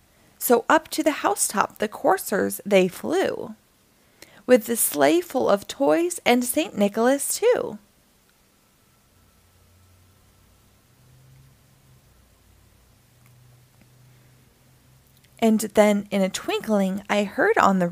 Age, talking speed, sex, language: 20-39, 95 wpm, female, English